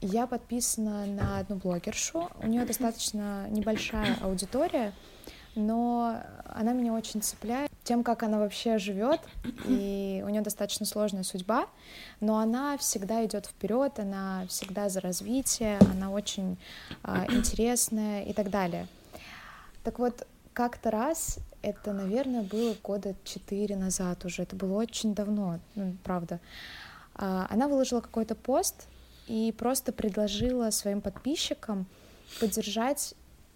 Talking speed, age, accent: 125 wpm, 20-39, native